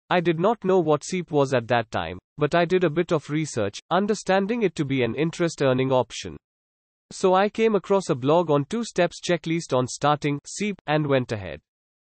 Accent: Indian